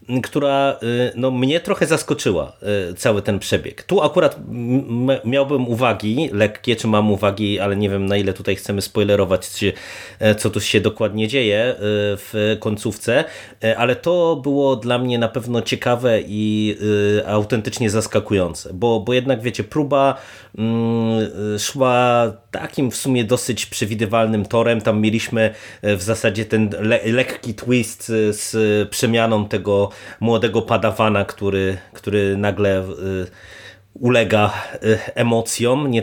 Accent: native